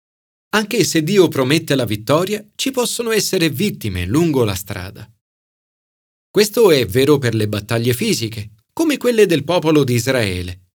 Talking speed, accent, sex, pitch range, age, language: 145 wpm, native, male, 110-180 Hz, 40-59, Italian